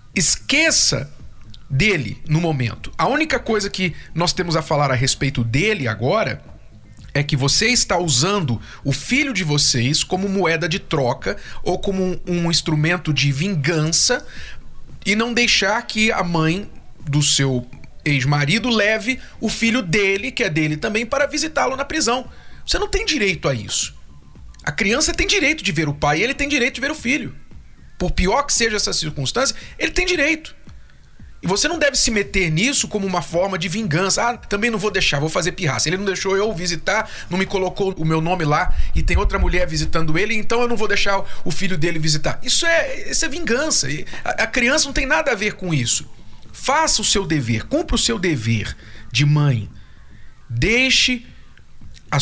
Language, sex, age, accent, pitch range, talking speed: Portuguese, male, 40-59, Brazilian, 145-230 Hz, 185 wpm